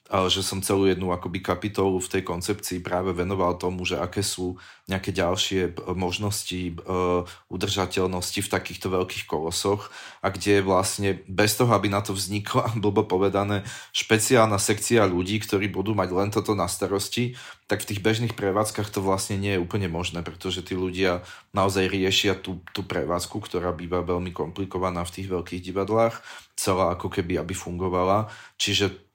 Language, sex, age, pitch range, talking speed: Slovak, male, 30-49, 90-105 Hz, 160 wpm